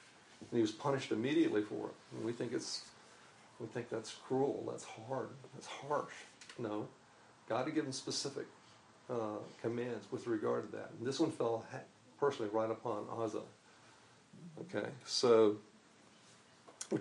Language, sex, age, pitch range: English, male, 50-69, 105-120 Hz